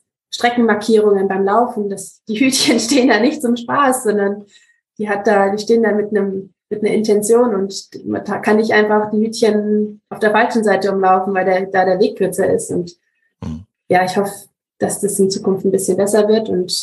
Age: 20-39